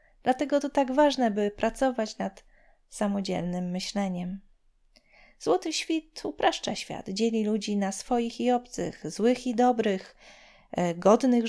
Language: Polish